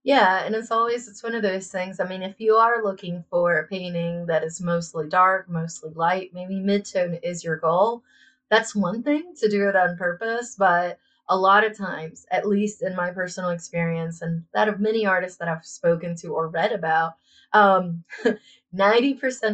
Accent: American